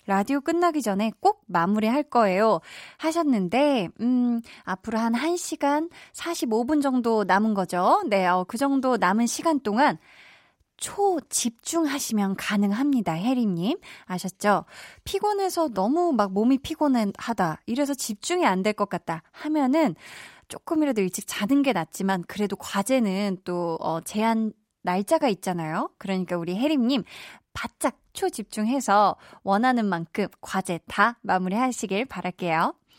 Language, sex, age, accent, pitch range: Korean, female, 20-39, native, 195-275 Hz